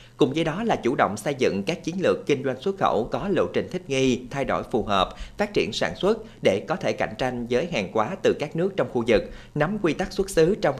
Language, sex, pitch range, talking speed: Vietnamese, male, 115-145 Hz, 265 wpm